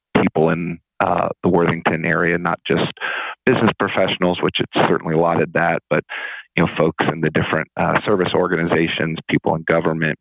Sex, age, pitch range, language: male, 40-59, 80-85 Hz, English